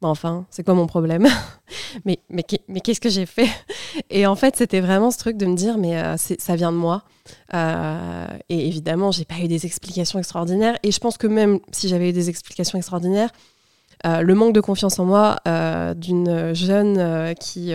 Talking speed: 205 wpm